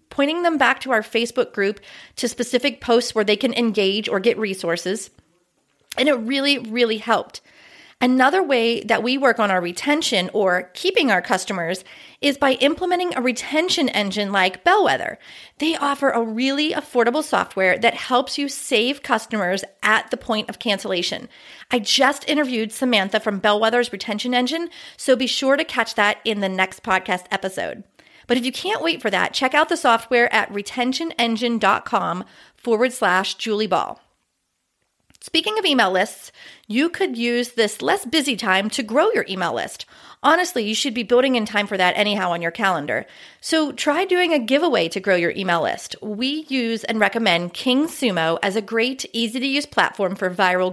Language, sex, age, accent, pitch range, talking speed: English, female, 30-49, American, 205-275 Hz, 175 wpm